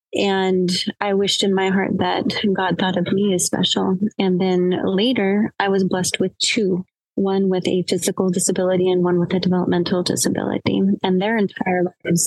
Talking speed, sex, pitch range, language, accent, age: 175 wpm, female, 180-195 Hz, English, American, 20-39